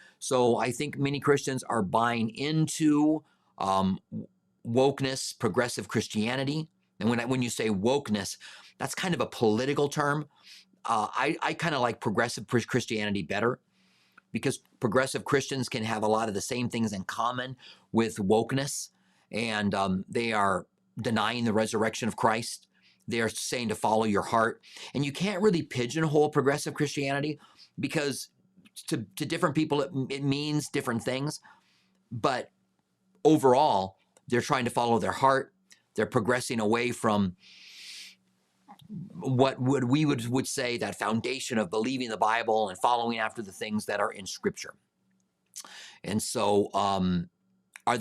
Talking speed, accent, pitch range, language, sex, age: 150 wpm, American, 110-145 Hz, English, male, 40-59